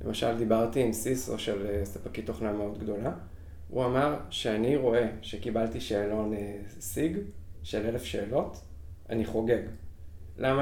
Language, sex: Hebrew, male